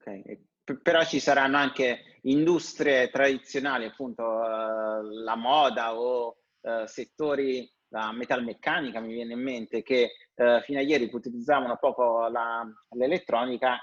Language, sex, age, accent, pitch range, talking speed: Italian, male, 30-49, native, 120-150 Hz, 115 wpm